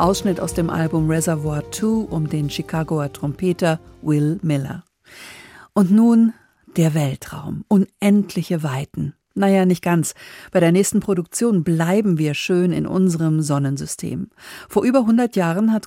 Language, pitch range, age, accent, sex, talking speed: German, 155-195 Hz, 50-69, German, female, 135 wpm